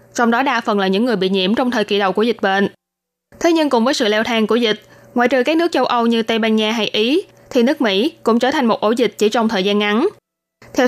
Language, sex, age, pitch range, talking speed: Vietnamese, female, 20-39, 215-265 Hz, 285 wpm